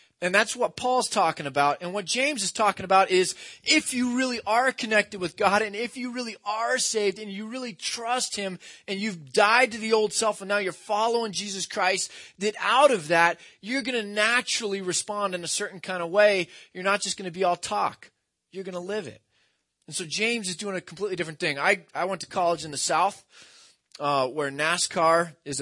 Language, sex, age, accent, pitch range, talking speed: English, male, 30-49, American, 155-210 Hz, 220 wpm